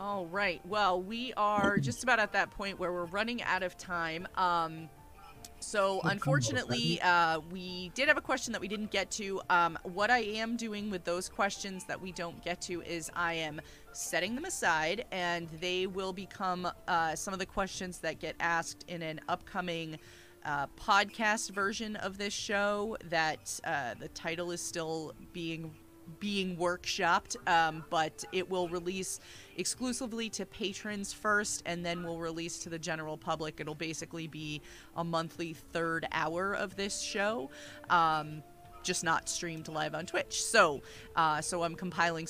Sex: female